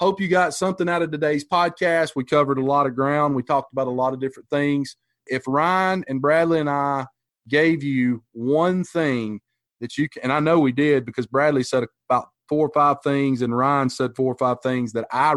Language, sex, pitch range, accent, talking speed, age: English, male, 130-155 Hz, American, 225 wpm, 30-49